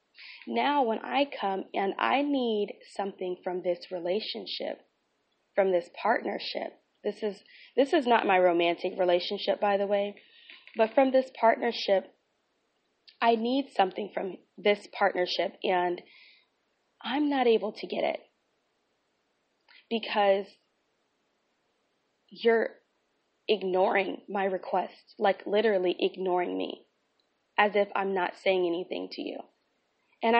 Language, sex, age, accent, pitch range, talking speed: English, female, 20-39, American, 190-235 Hz, 120 wpm